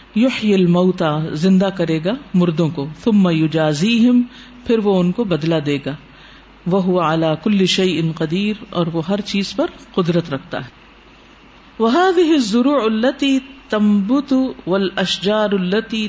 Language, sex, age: Urdu, female, 50-69